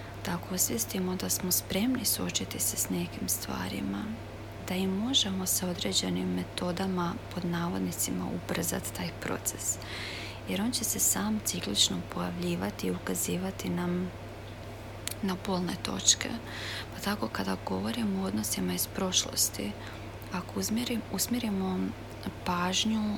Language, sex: Croatian, female